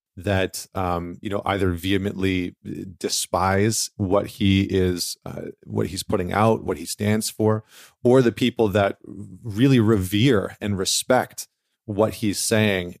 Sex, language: male, English